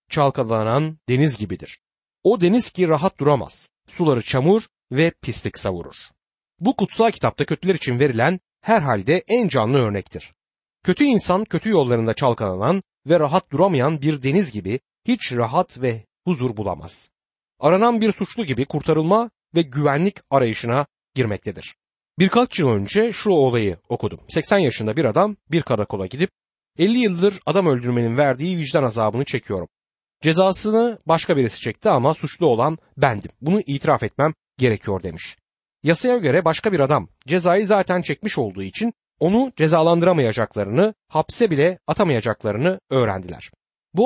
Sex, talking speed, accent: male, 135 wpm, native